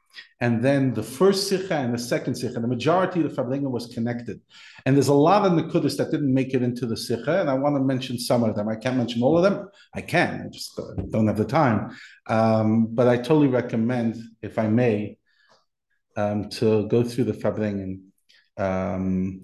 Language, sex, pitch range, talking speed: English, male, 115-145 Hz, 205 wpm